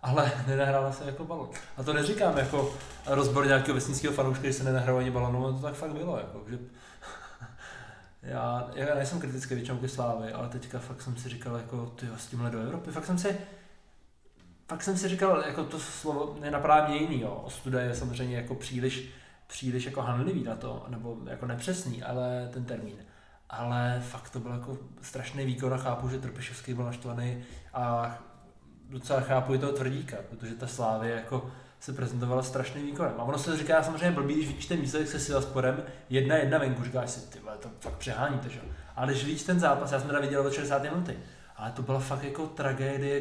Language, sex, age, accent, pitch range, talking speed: Czech, male, 20-39, native, 125-150 Hz, 190 wpm